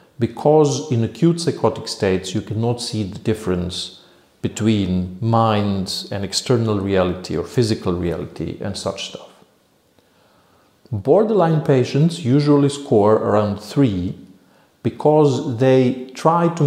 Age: 40-59